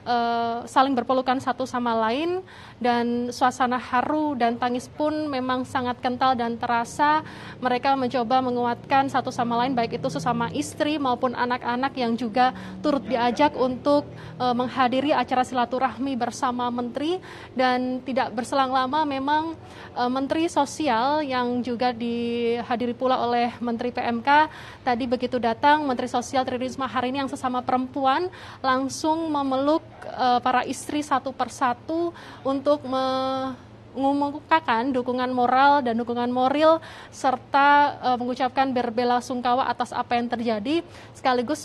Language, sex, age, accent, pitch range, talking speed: Indonesian, female, 20-39, native, 245-275 Hz, 125 wpm